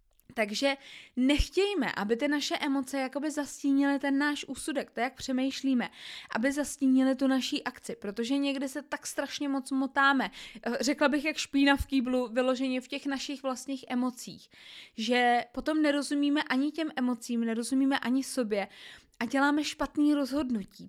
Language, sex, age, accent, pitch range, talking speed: Czech, female, 20-39, native, 250-300 Hz, 145 wpm